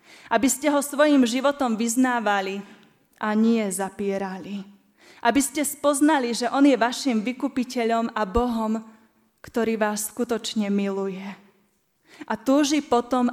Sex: female